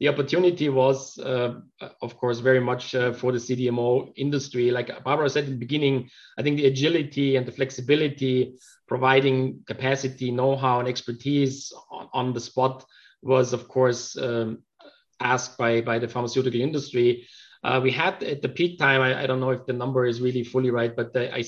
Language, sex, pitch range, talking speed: English, male, 120-135 Hz, 180 wpm